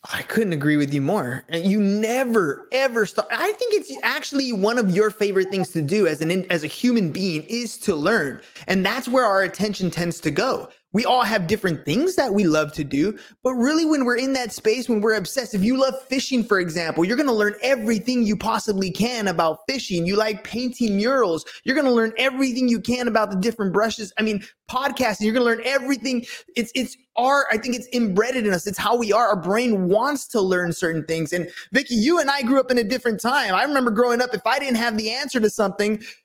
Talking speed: 225 wpm